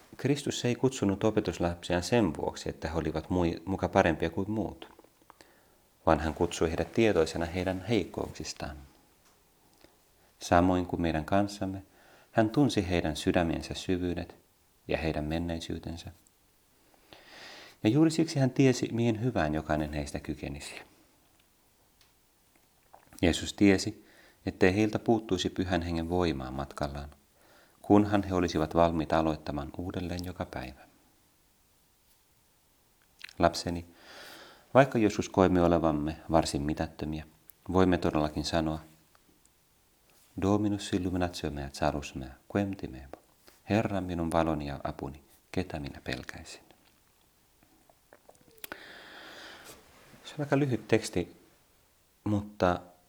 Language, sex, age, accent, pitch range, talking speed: Finnish, male, 30-49, native, 80-100 Hz, 100 wpm